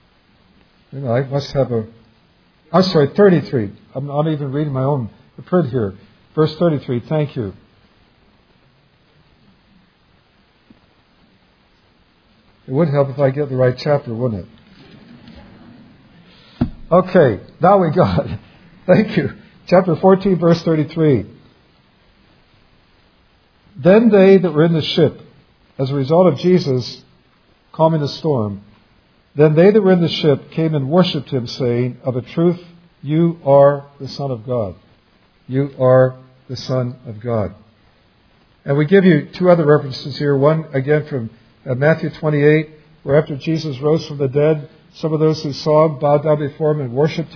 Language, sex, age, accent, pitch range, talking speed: English, male, 60-79, American, 130-160 Hz, 150 wpm